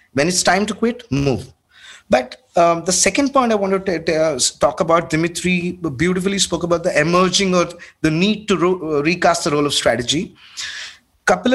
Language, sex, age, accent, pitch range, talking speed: English, male, 20-39, Indian, 155-210 Hz, 180 wpm